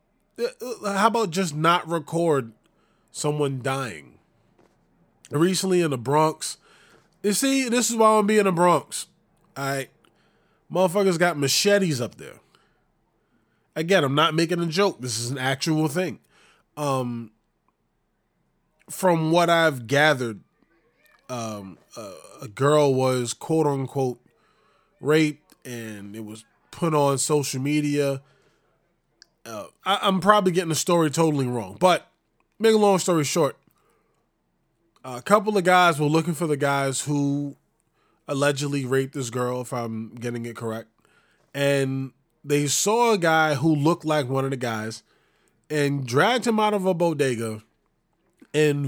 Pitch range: 135-175 Hz